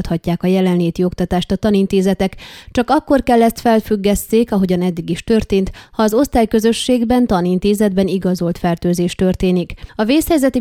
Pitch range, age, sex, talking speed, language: 180-215 Hz, 20-39, female, 135 wpm, Hungarian